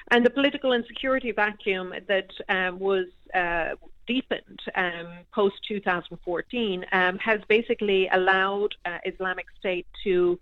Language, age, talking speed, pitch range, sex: English, 40-59, 130 wpm, 180-205 Hz, female